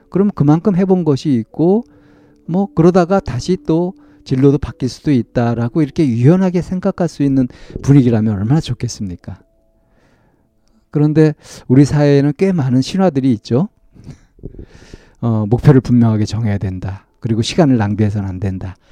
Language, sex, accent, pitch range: Korean, male, native, 105-145 Hz